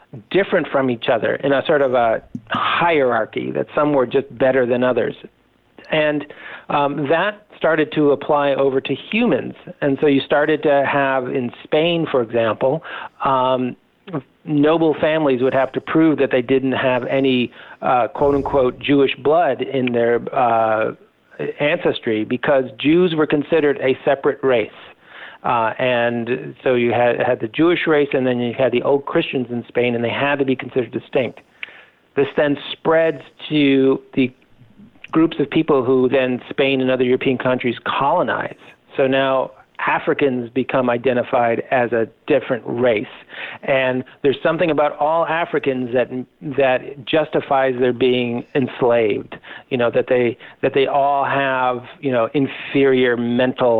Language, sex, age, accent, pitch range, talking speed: English, male, 50-69, American, 125-150 Hz, 155 wpm